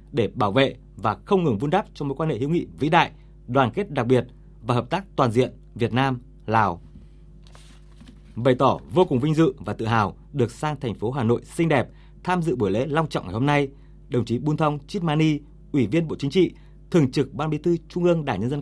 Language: Vietnamese